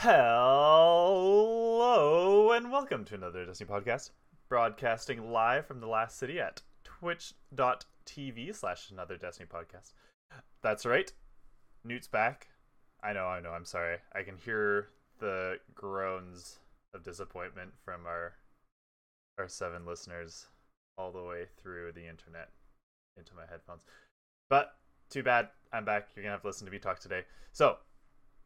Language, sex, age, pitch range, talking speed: English, male, 20-39, 90-120 Hz, 135 wpm